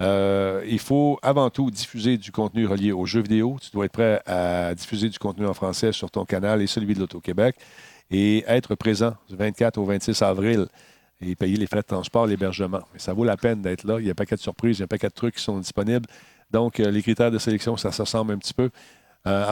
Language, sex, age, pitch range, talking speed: French, male, 50-69, 100-115 Hz, 240 wpm